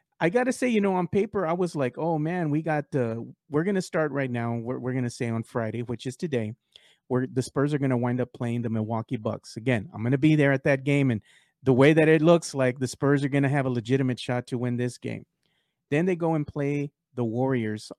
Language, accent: English, American